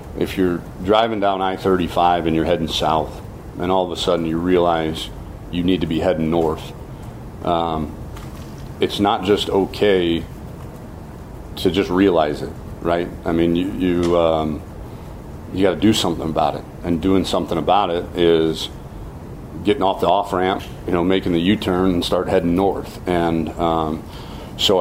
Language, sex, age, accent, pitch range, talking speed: English, male, 40-59, American, 85-95 Hz, 160 wpm